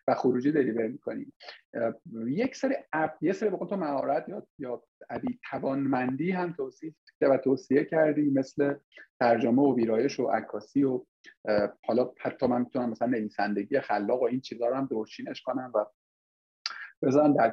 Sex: male